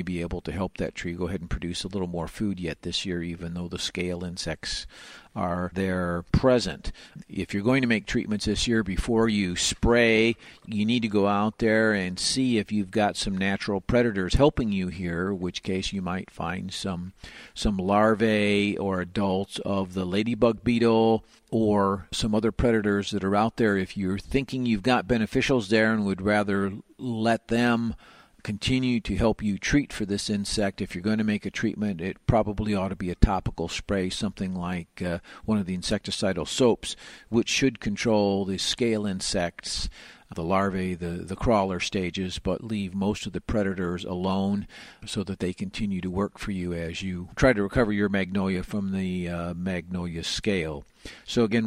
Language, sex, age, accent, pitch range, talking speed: English, male, 50-69, American, 90-110 Hz, 185 wpm